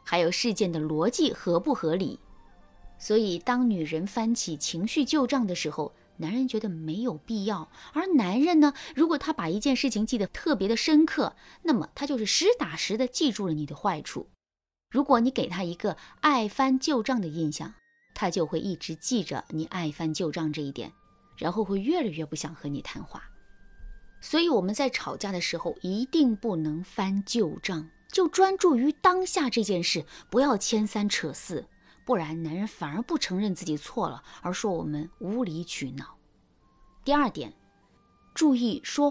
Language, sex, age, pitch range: Chinese, female, 20-39, 170-275 Hz